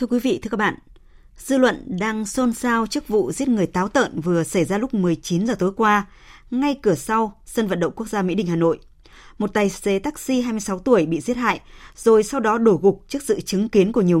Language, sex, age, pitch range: Vietnamese, female, 20-39, 180-235 Hz